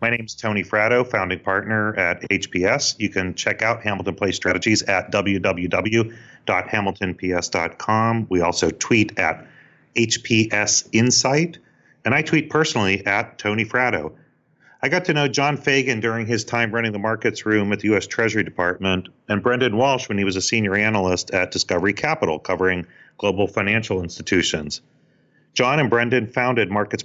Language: English